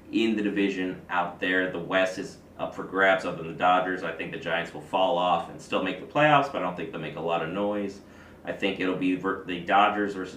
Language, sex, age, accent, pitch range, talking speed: English, male, 30-49, American, 85-100 Hz, 255 wpm